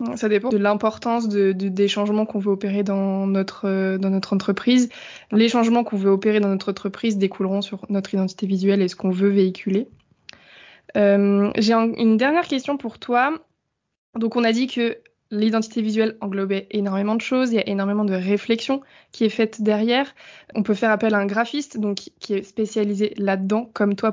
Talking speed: 195 wpm